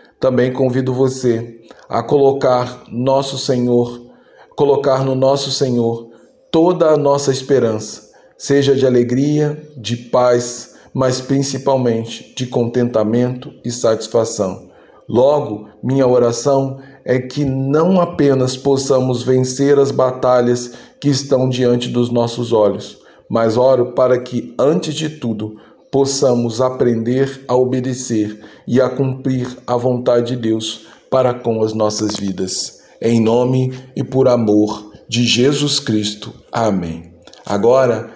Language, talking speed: Portuguese, 120 wpm